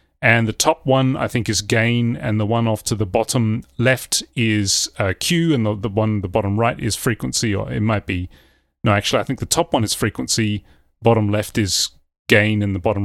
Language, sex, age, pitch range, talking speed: English, male, 30-49, 105-130 Hz, 220 wpm